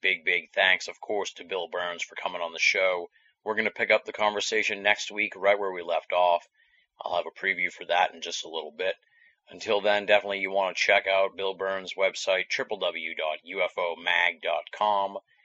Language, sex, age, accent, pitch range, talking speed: English, male, 30-49, American, 90-115 Hz, 195 wpm